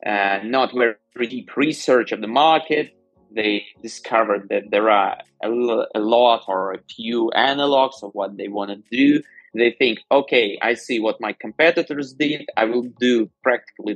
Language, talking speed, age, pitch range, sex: English, 170 wpm, 20-39, 105-130 Hz, male